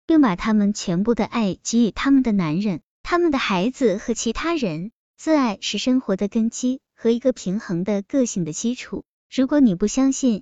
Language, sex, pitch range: Chinese, male, 190-255 Hz